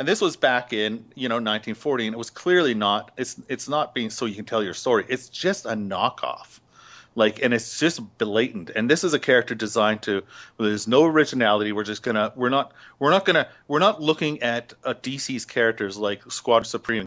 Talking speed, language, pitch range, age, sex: 215 wpm, English, 110-130 Hz, 40-59, male